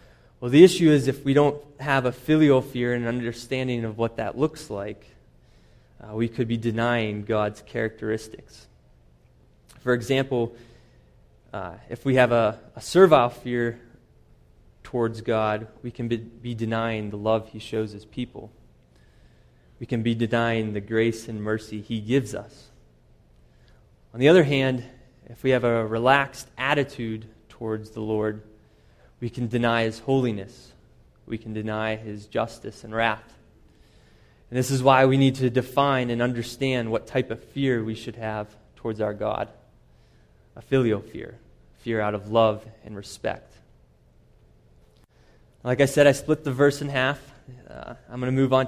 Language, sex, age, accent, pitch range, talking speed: English, male, 20-39, American, 110-130 Hz, 160 wpm